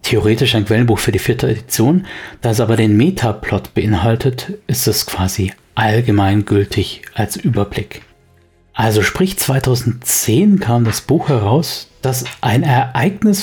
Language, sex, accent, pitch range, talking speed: German, male, German, 110-135 Hz, 130 wpm